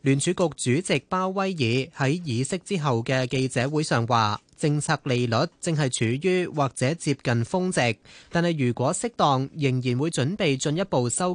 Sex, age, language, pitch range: male, 20-39, Chinese, 125-165 Hz